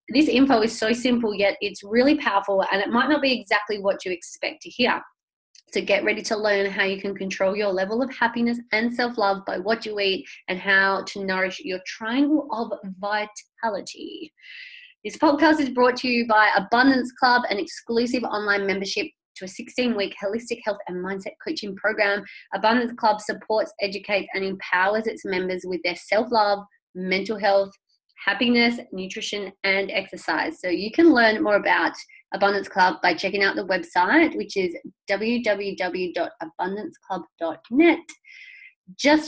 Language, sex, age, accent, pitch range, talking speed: English, female, 20-39, Australian, 195-260 Hz, 155 wpm